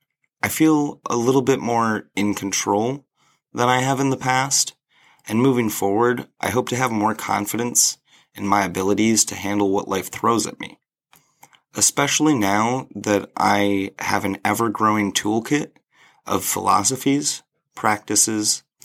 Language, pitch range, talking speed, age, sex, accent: English, 100-135 Hz, 140 wpm, 30-49, male, American